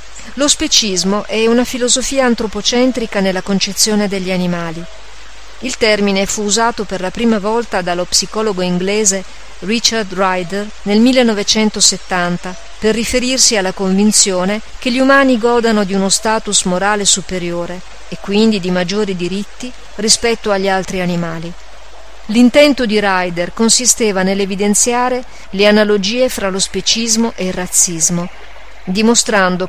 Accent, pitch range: native, 190-230 Hz